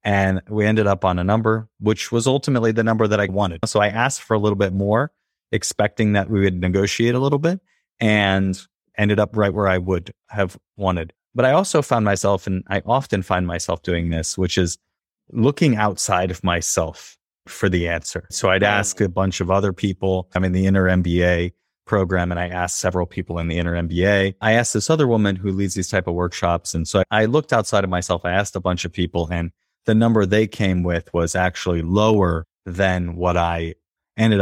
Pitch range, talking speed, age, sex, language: 90-105 Hz, 210 wpm, 30-49, male, English